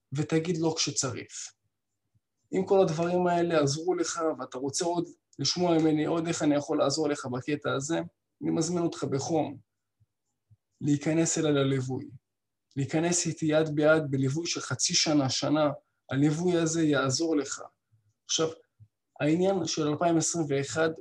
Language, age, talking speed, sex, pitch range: Hebrew, 20-39, 135 wpm, male, 140-175 Hz